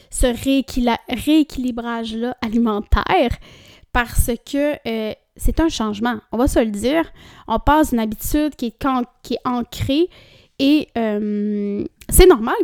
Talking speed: 140 wpm